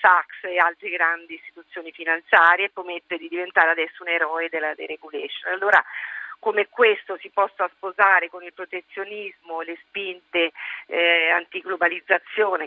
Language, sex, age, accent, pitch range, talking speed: Italian, female, 40-59, native, 170-200 Hz, 135 wpm